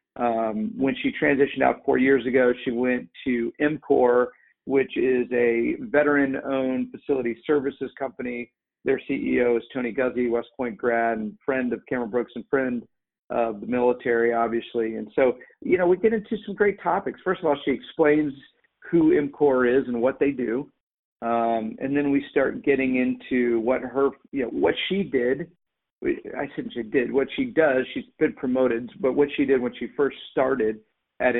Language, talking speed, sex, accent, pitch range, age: English, 180 wpm, male, American, 125-150 Hz, 50-69